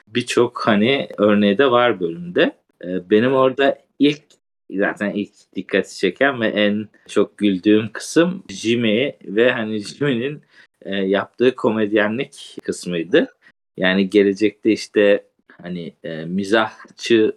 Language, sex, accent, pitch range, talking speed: Turkish, male, native, 100-120 Hz, 105 wpm